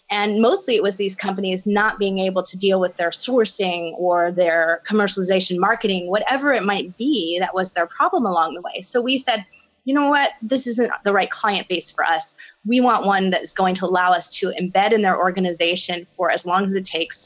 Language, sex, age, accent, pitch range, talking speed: English, female, 30-49, American, 185-225 Hz, 220 wpm